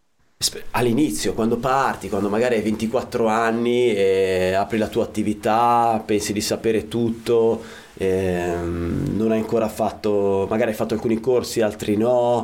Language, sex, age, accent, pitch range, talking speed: Italian, male, 30-49, native, 100-125 Hz, 140 wpm